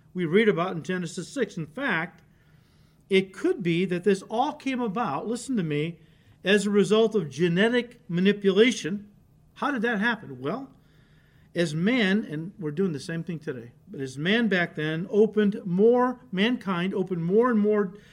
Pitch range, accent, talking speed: 150-200 Hz, American, 170 wpm